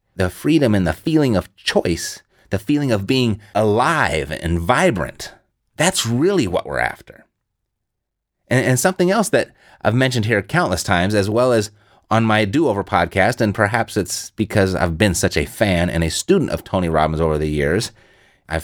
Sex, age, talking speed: male, 30-49, 175 wpm